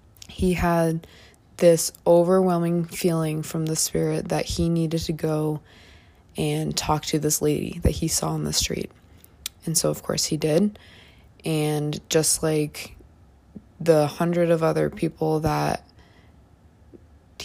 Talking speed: 135 wpm